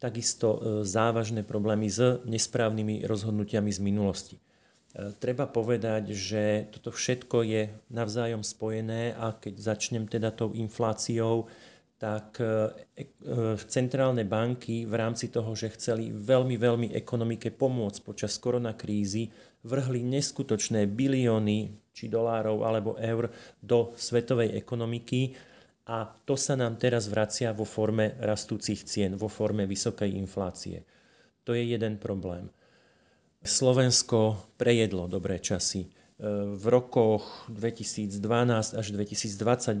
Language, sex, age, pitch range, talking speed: Slovak, male, 40-59, 105-120 Hz, 110 wpm